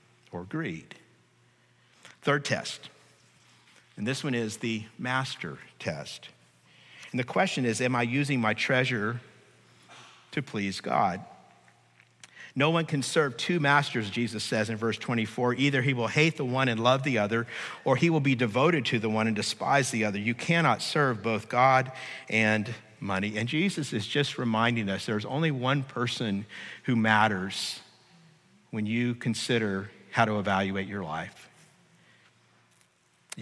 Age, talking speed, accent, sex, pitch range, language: 50-69, 145 wpm, American, male, 115-155 Hz, English